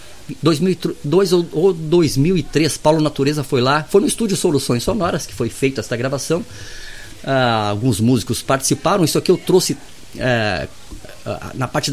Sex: male